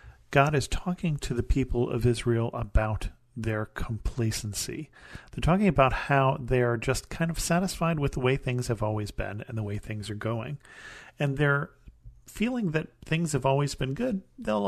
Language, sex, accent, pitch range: English, male, American, 120-145 Hz